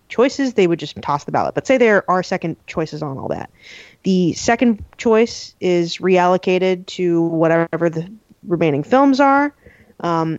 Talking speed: 160 wpm